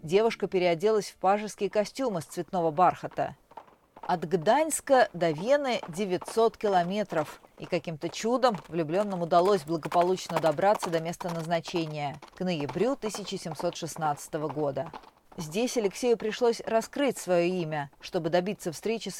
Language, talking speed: Russian, 120 wpm